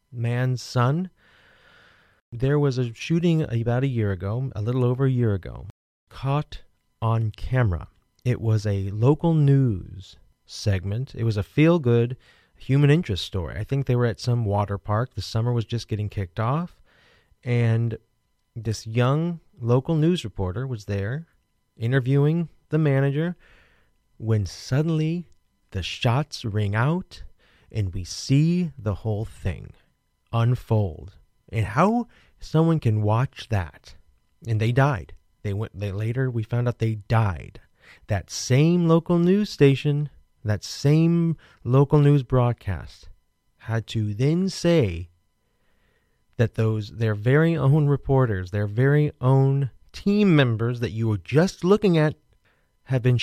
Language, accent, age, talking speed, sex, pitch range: English, American, 30-49, 140 wpm, male, 105-140 Hz